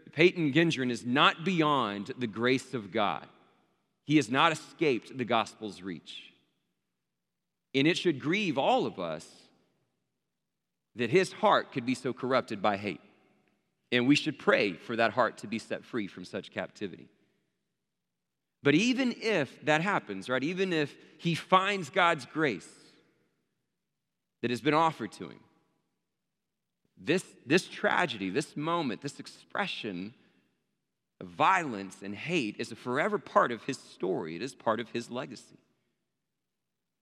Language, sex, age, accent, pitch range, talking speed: English, male, 40-59, American, 115-155 Hz, 145 wpm